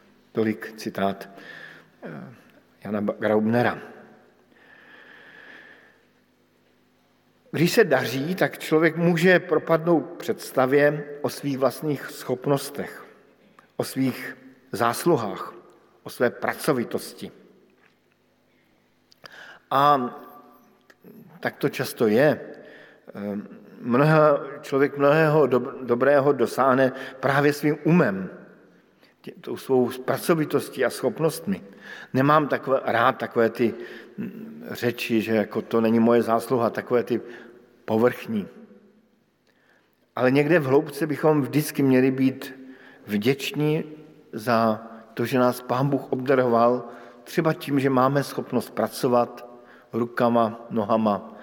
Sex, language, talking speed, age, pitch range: male, Slovak, 90 wpm, 50-69, 115-155 Hz